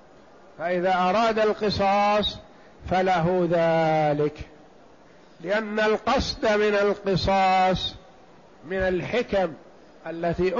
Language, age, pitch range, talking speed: Arabic, 50-69, 180-220 Hz, 70 wpm